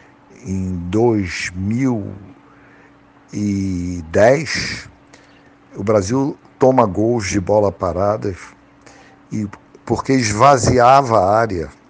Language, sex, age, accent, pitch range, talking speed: Portuguese, male, 60-79, Brazilian, 95-135 Hz, 65 wpm